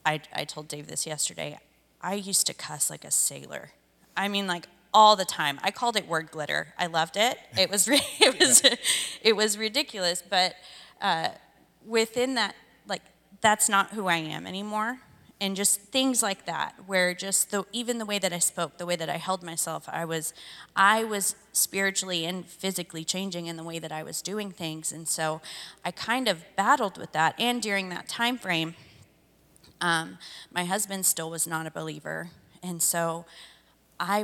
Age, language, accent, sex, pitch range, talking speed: 30-49, English, American, female, 165-200 Hz, 185 wpm